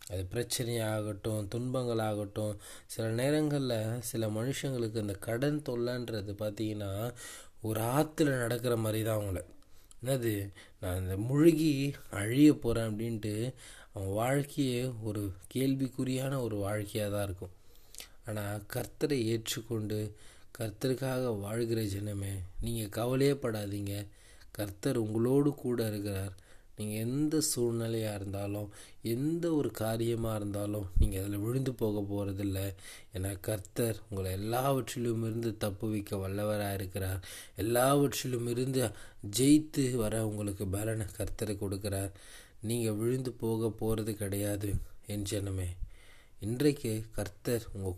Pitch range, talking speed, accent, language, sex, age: 100-120 Hz, 105 wpm, native, Tamil, male, 20-39